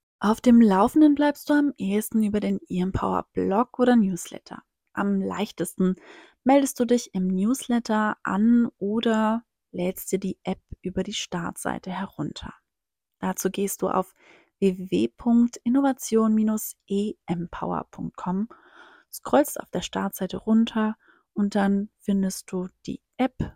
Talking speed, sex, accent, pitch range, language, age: 115 wpm, female, German, 195-240 Hz, German, 30-49